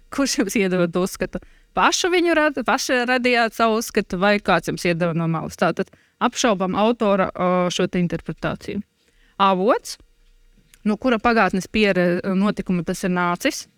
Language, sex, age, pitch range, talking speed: English, female, 20-39, 190-245 Hz, 135 wpm